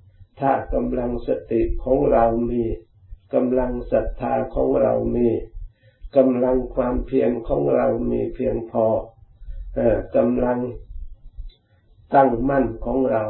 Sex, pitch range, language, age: male, 105-125 Hz, Thai, 60-79